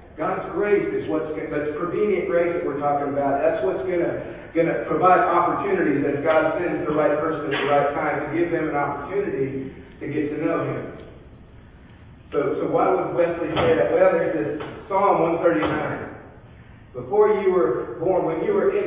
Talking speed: 180 wpm